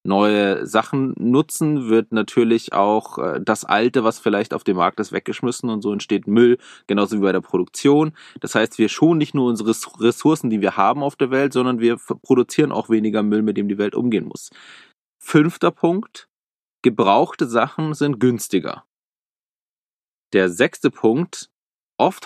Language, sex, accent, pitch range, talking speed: German, male, German, 100-125 Hz, 160 wpm